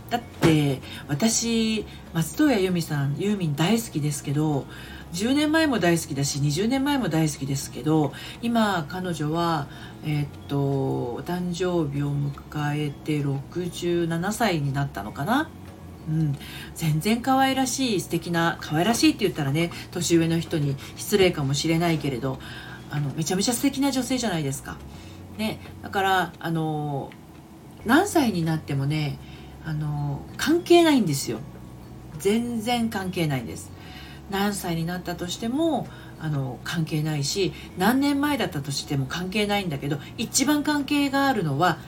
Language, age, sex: Japanese, 40-59, female